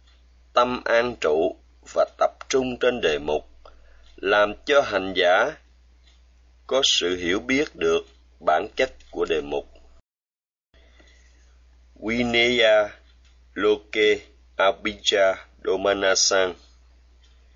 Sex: male